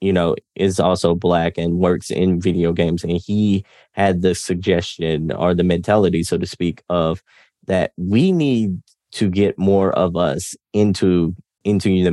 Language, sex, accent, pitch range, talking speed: English, male, American, 85-100 Hz, 165 wpm